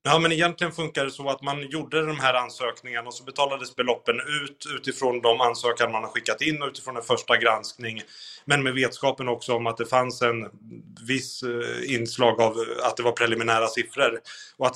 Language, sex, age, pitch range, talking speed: Swedish, male, 30-49, 115-130 Hz, 190 wpm